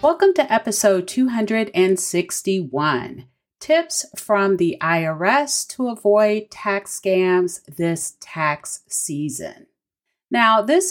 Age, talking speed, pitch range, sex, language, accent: 30-49, 95 wpm, 170-220 Hz, female, English, American